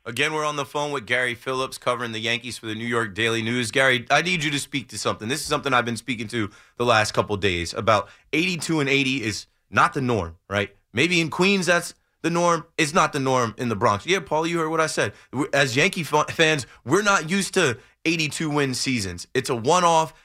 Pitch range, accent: 120-170 Hz, American